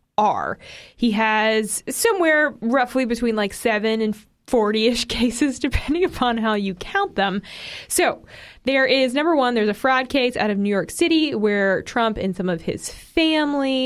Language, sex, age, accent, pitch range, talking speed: English, female, 20-39, American, 185-255 Hz, 170 wpm